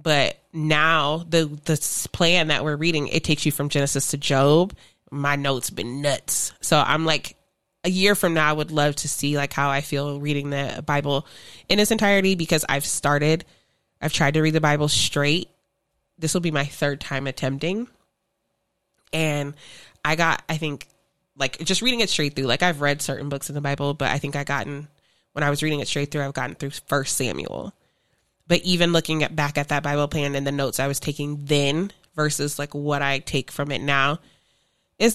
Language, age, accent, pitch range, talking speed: English, 20-39, American, 140-155 Hz, 205 wpm